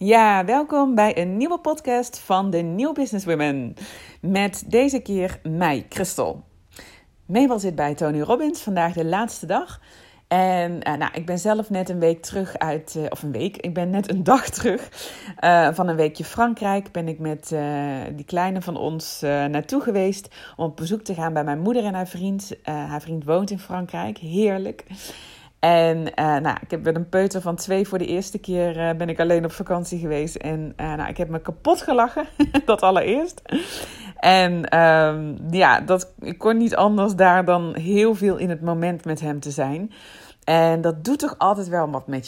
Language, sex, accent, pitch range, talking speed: Dutch, female, Dutch, 155-195 Hz, 190 wpm